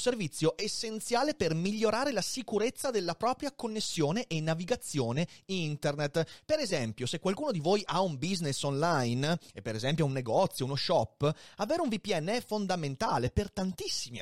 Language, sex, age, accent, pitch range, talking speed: Italian, male, 30-49, native, 140-220 Hz, 150 wpm